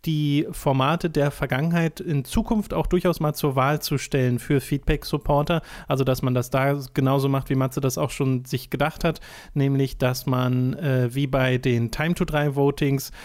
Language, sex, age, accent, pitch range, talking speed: German, male, 30-49, German, 135-155 Hz, 170 wpm